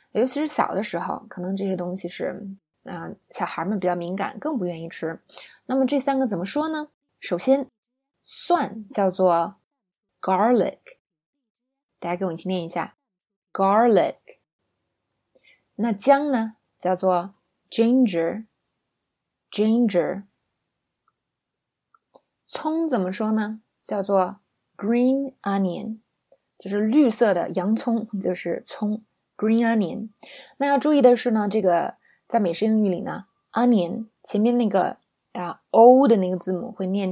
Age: 20-39